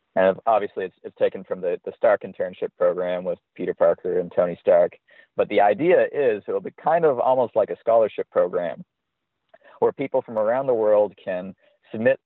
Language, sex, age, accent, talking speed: English, male, 40-59, American, 185 wpm